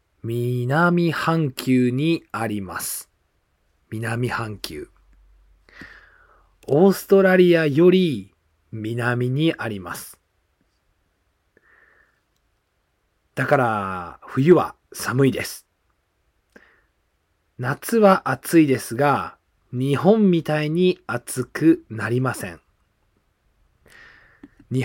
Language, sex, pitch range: Japanese, male, 100-160 Hz